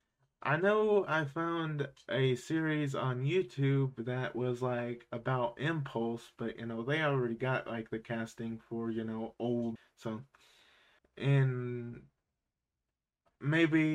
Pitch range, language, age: 115-150 Hz, English, 20-39